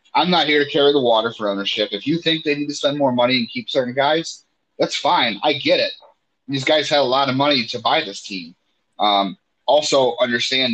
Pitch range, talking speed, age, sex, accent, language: 110-140 Hz, 230 wpm, 30-49, male, American, English